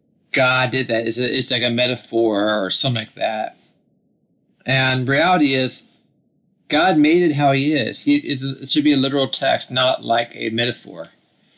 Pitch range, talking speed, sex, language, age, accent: 125-145 Hz, 170 wpm, male, English, 30-49, American